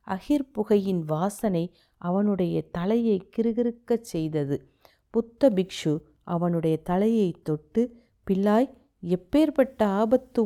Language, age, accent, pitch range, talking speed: Tamil, 50-69, native, 180-240 Hz, 80 wpm